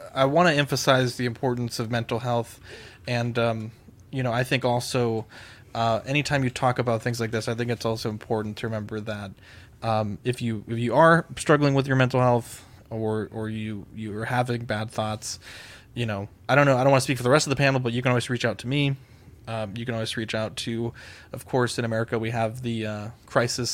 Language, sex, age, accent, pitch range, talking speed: English, male, 20-39, American, 110-125 Hz, 230 wpm